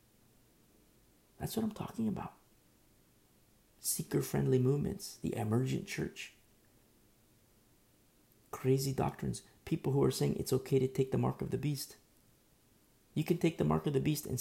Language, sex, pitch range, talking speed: English, male, 110-170 Hz, 140 wpm